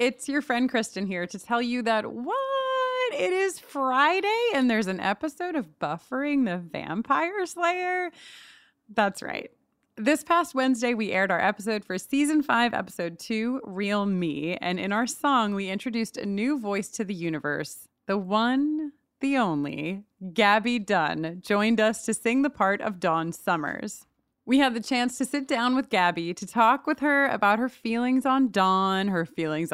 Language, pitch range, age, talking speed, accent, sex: English, 190-270 Hz, 30-49, 170 wpm, American, female